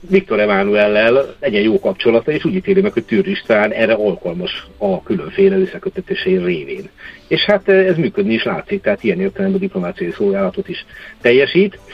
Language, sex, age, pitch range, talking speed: Hungarian, male, 50-69, 180-200 Hz, 160 wpm